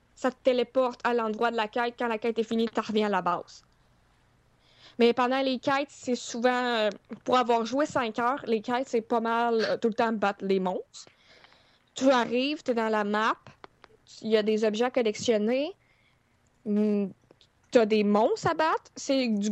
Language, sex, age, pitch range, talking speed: French, female, 20-39, 210-250 Hz, 195 wpm